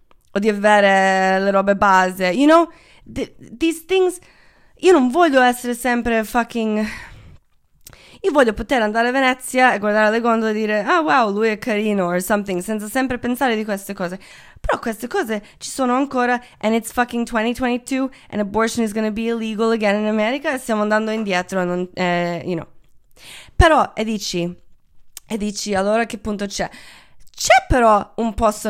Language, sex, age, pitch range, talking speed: Italian, female, 20-39, 195-245 Hz, 165 wpm